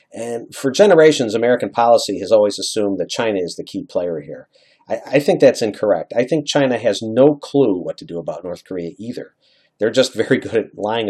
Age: 40-59